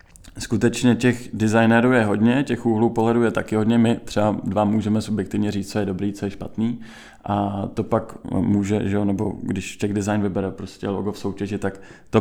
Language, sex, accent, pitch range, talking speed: Czech, male, native, 100-110 Hz, 190 wpm